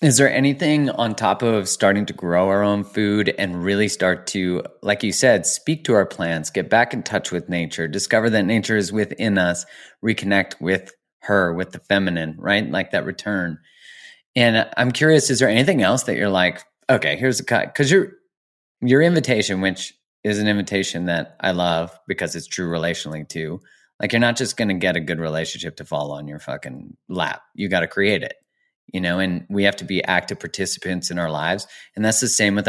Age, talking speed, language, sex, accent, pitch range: 30-49, 205 wpm, English, male, American, 90-115 Hz